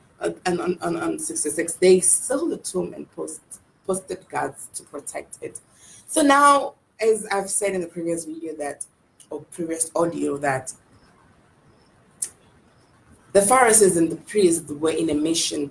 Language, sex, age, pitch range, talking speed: English, female, 20-39, 145-180 Hz, 155 wpm